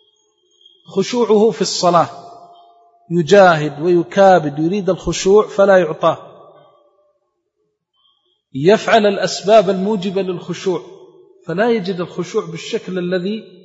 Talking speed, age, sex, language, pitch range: 80 wpm, 40-59, male, Arabic, 170-210 Hz